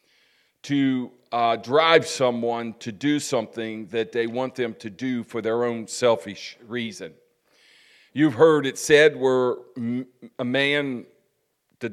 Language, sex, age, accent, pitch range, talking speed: English, male, 50-69, American, 125-160 Hz, 130 wpm